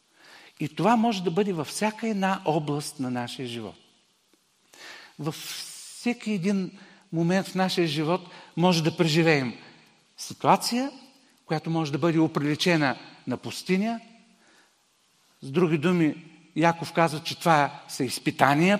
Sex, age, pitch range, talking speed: male, 50-69, 160-215 Hz, 125 wpm